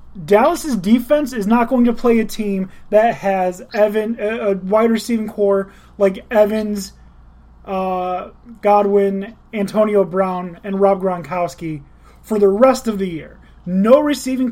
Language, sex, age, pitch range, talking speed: English, male, 20-39, 180-220 Hz, 135 wpm